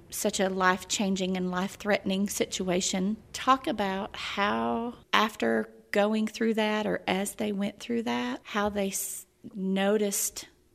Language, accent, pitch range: English, American, 175-215 Hz